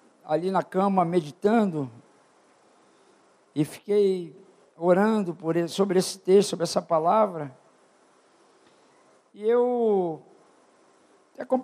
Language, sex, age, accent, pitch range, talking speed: Portuguese, male, 50-69, Brazilian, 185-230 Hz, 95 wpm